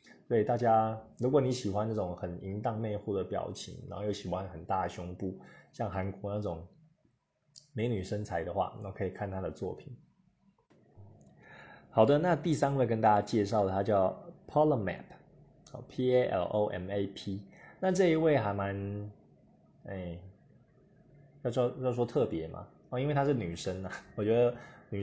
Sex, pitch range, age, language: male, 95-125 Hz, 20-39, Chinese